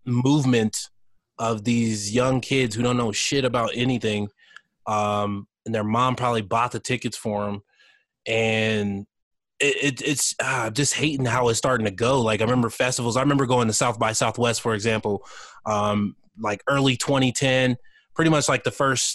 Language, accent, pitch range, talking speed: English, American, 110-130 Hz, 165 wpm